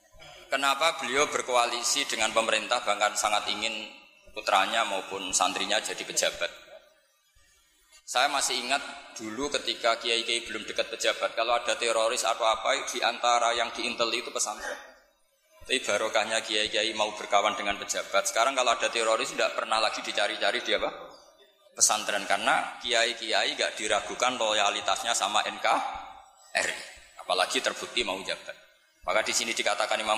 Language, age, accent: Indonesian, 20-39, native